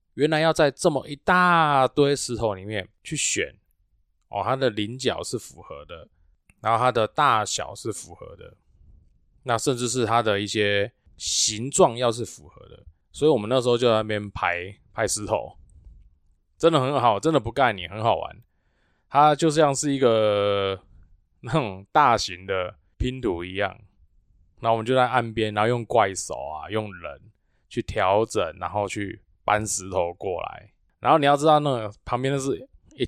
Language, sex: Chinese, male